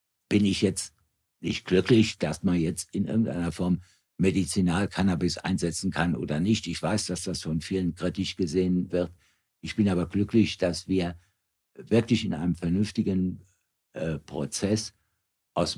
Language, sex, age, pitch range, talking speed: German, male, 60-79, 85-105 Hz, 145 wpm